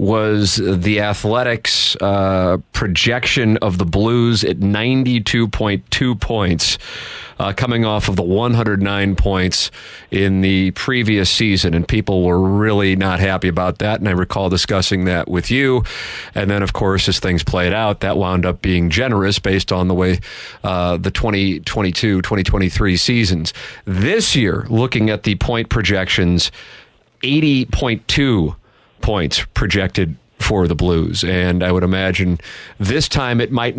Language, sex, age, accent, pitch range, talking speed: English, male, 40-59, American, 90-110 Hz, 140 wpm